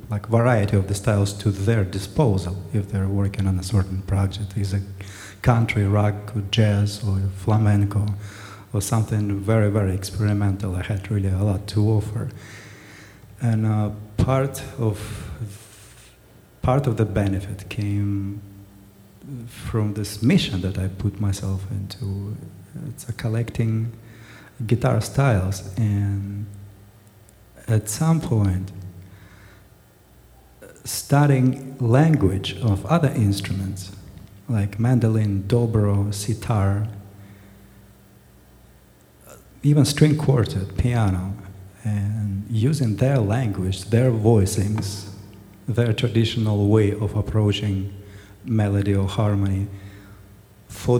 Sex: male